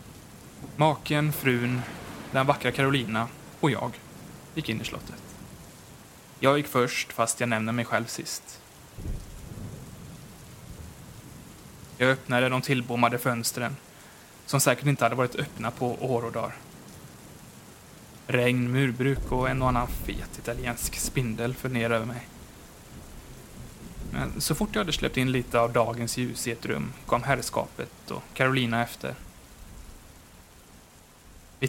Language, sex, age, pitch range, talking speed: English, male, 20-39, 115-130 Hz, 125 wpm